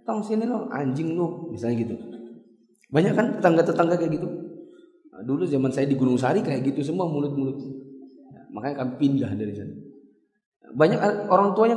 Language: Indonesian